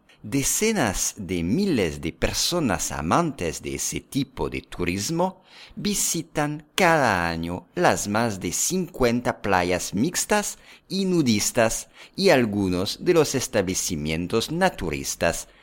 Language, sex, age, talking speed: English, male, 50-69, 110 wpm